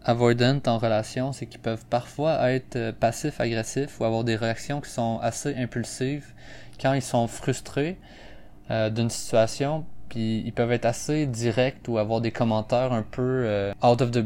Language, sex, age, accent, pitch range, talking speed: French, male, 20-39, Canadian, 110-130 Hz, 175 wpm